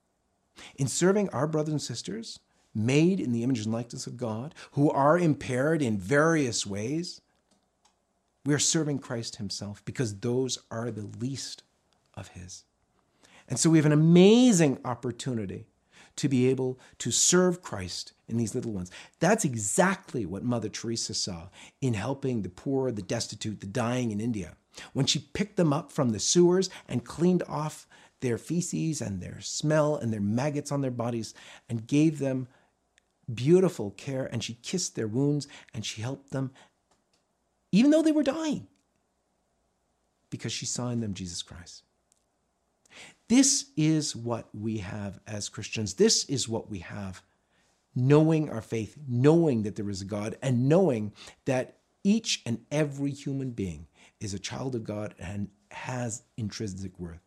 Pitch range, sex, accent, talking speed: 105-150 Hz, male, American, 160 wpm